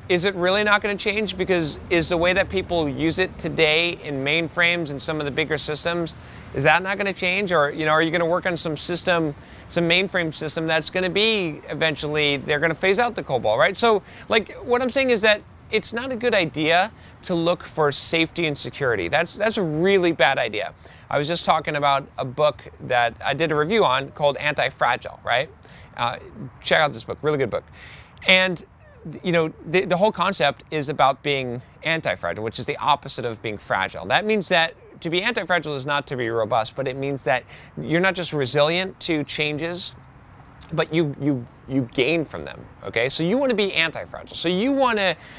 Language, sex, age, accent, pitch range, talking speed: English, male, 30-49, American, 145-185 Hz, 210 wpm